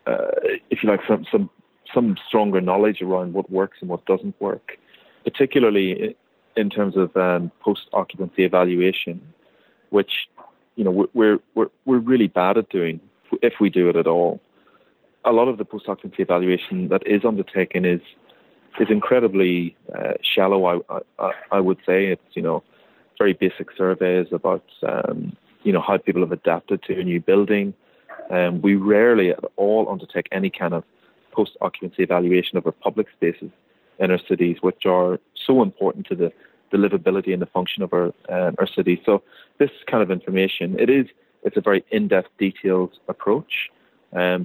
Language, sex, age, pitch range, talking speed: English, male, 30-49, 90-100 Hz, 170 wpm